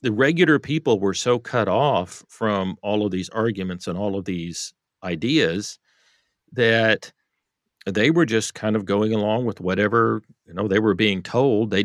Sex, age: male, 50-69